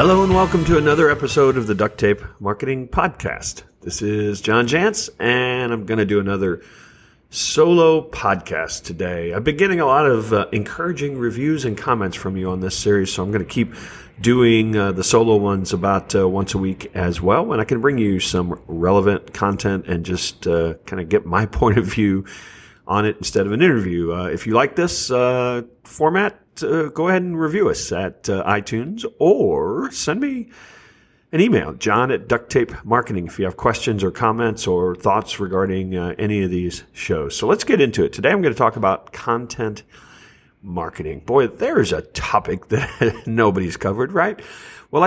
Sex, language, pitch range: male, English, 95-130 Hz